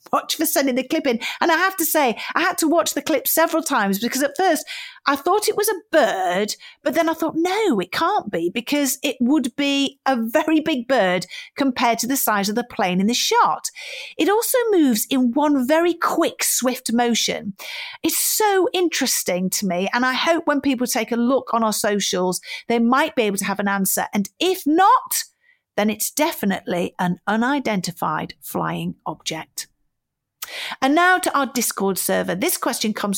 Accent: British